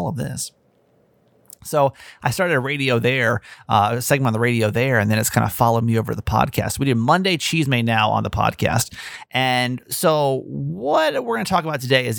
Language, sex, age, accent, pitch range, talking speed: English, male, 30-49, American, 120-155 Hz, 220 wpm